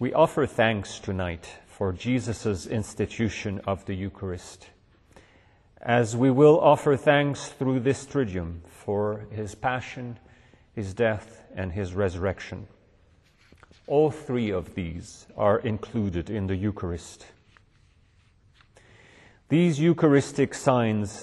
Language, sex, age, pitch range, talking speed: English, male, 40-59, 100-120 Hz, 105 wpm